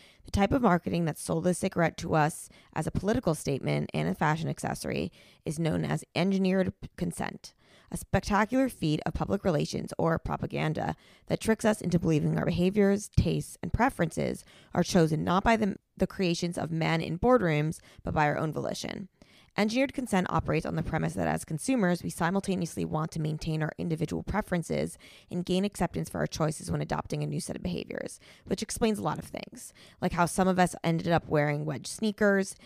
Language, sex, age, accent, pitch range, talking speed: English, female, 20-39, American, 155-195 Hz, 190 wpm